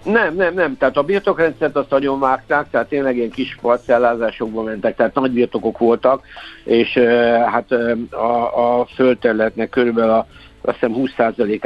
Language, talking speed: Hungarian, 160 wpm